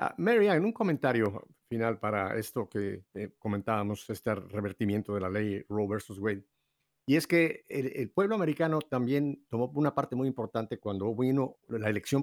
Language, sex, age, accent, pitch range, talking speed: Spanish, male, 50-69, Mexican, 110-145 Hz, 175 wpm